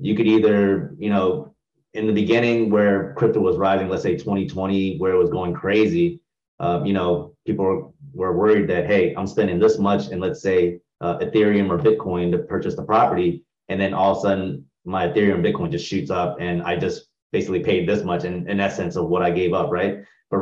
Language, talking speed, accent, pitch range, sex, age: English, 210 wpm, American, 95-110 Hz, male, 30-49